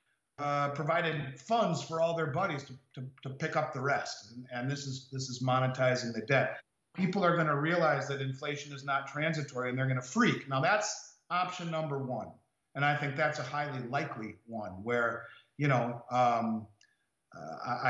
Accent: American